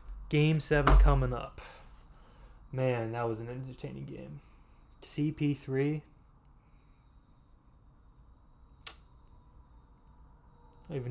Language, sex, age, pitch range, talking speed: English, male, 20-39, 120-140 Hz, 75 wpm